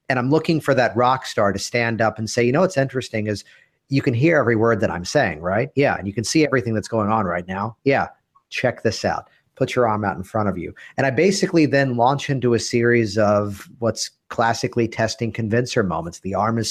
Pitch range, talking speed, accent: 105-135 Hz, 235 wpm, American